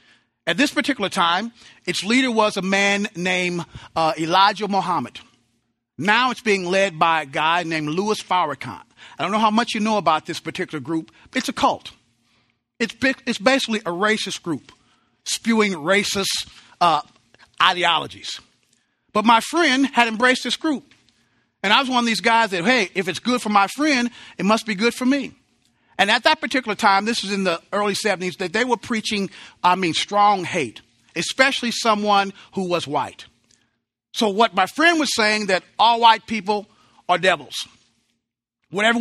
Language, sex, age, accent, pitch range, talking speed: English, male, 40-59, American, 170-230 Hz, 175 wpm